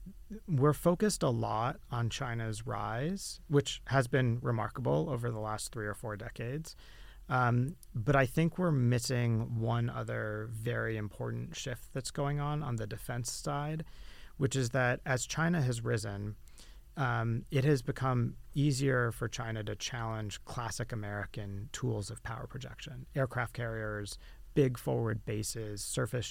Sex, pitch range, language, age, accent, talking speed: male, 110-135 Hz, English, 30-49, American, 145 wpm